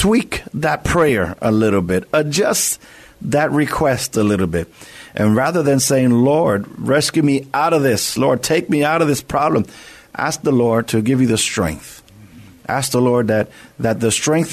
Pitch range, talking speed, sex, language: 115-145 Hz, 180 wpm, male, English